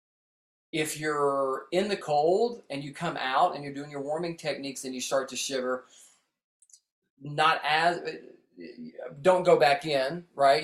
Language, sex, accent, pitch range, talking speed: English, male, American, 130-150 Hz, 150 wpm